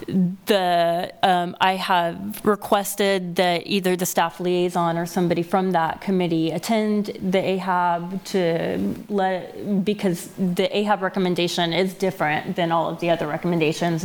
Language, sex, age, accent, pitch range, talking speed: English, female, 30-49, American, 170-195 Hz, 135 wpm